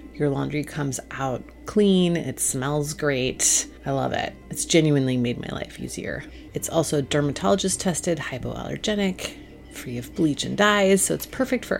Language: English